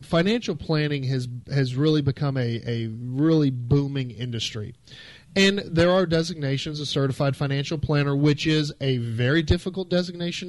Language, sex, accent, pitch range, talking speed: English, male, American, 125-155 Hz, 145 wpm